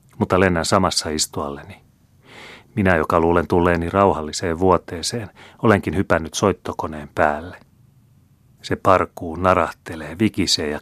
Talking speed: 105 wpm